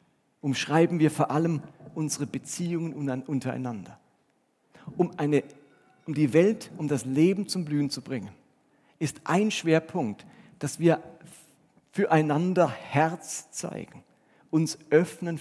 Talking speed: 110 wpm